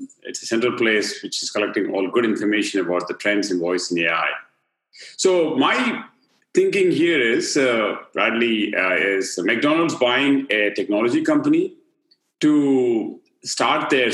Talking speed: 145 wpm